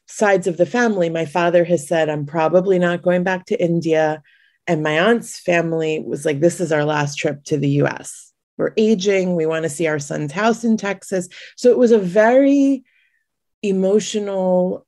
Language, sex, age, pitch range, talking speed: English, female, 30-49, 170-230 Hz, 190 wpm